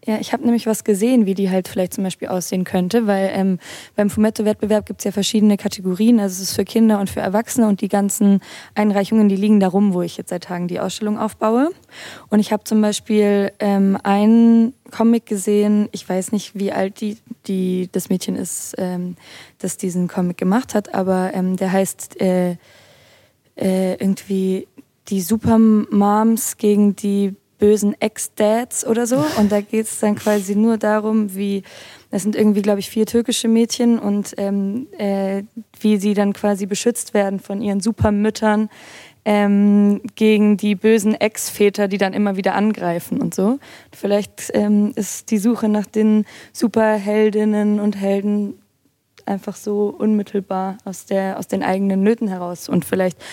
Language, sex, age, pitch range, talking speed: German, female, 20-39, 195-215 Hz, 170 wpm